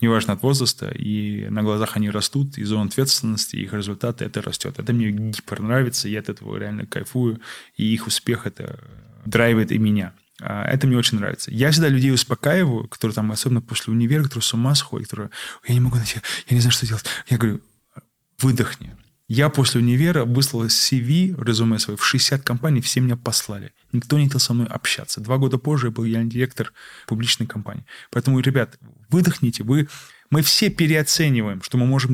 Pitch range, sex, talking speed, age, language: 115-140 Hz, male, 185 wpm, 20-39, Russian